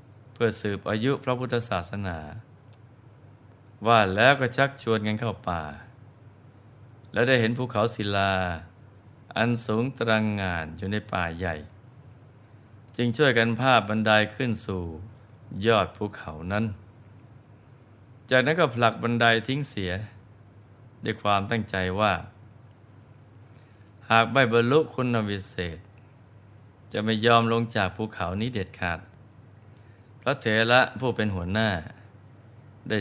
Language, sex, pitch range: Thai, male, 105-120 Hz